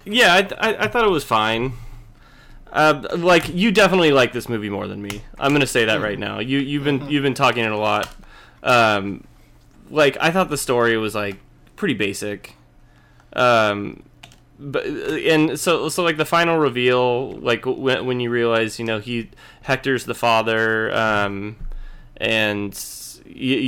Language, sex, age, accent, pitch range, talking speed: English, male, 20-39, American, 110-130 Hz, 165 wpm